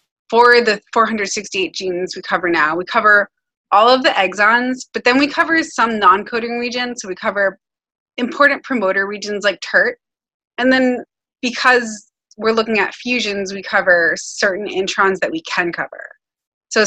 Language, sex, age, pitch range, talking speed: English, female, 20-39, 185-230 Hz, 155 wpm